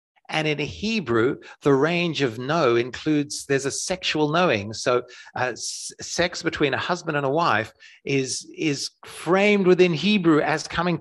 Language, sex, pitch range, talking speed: English, male, 125-175 Hz, 160 wpm